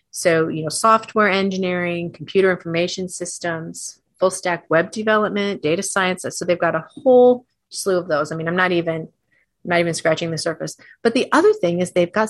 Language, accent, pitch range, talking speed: English, American, 160-205 Hz, 190 wpm